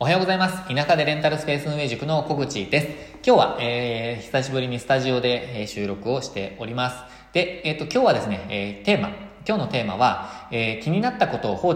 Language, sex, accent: Japanese, male, native